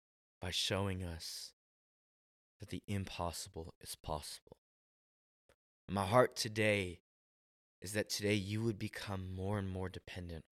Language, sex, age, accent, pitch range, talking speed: English, male, 20-39, American, 85-110 Hz, 120 wpm